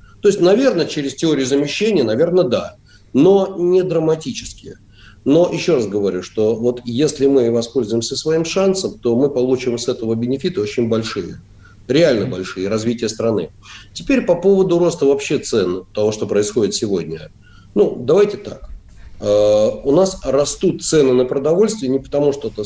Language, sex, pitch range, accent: Russian, male, 110-165 Hz, native